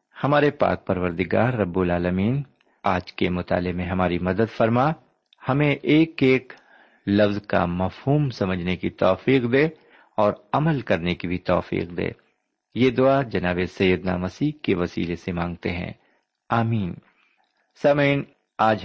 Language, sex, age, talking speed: Urdu, male, 50-69, 135 wpm